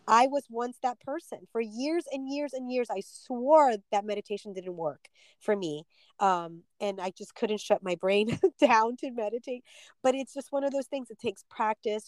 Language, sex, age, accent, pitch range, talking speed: English, female, 20-39, American, 195-245 Hz, 200 wpm